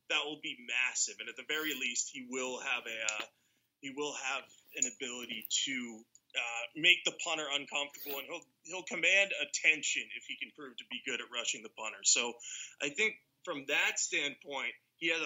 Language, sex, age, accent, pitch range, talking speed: English, male, 20-39, American, 120-155 Hz, 195 wpm